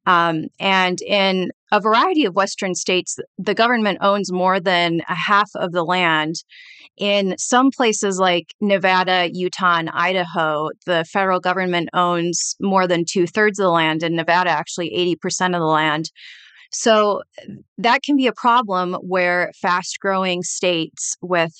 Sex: female